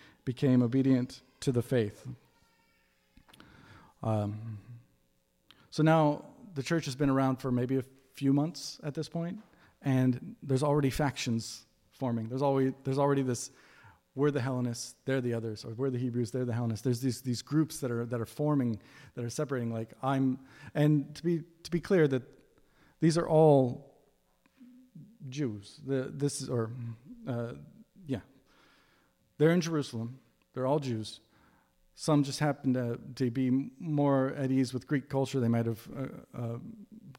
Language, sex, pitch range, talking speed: English, male, 120-145 Hz, 155 wpm